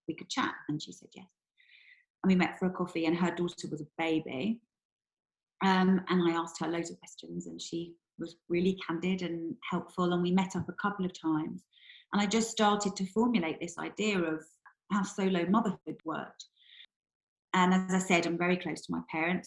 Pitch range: 170-220 Hz